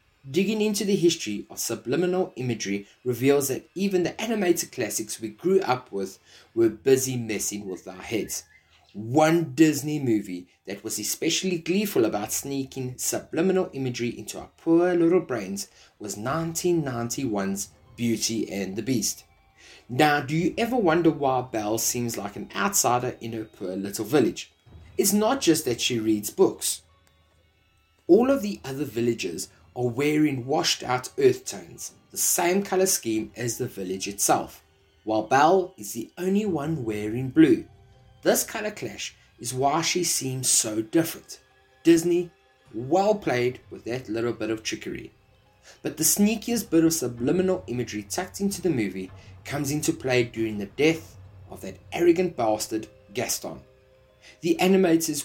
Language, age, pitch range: English, 20-39, 110-175 Hz